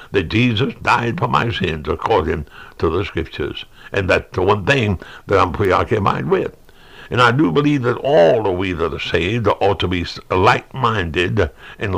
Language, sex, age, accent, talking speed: English, male, 60-79, American, 175 wpm